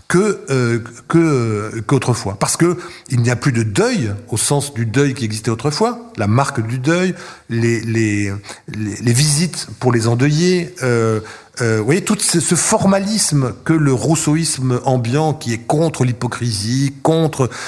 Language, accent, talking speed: French, French, 165 wpm